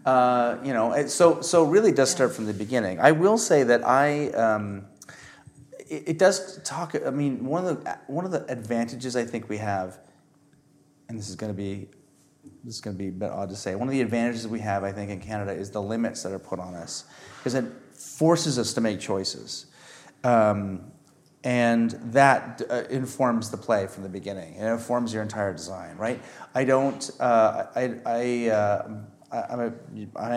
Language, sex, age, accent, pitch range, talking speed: English, male, 30-49, American, 105-130 Hz, 195 wpm